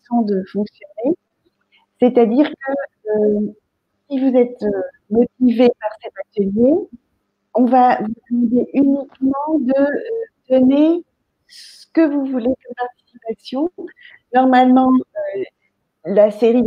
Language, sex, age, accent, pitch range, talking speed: French, female, 50-69, French, 215-280 Hz, 105 wpm